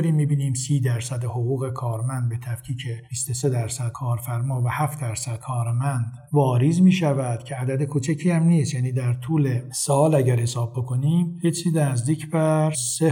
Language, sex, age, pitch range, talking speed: Persian, male, 50-69, 125-155 Hz, 150 wpm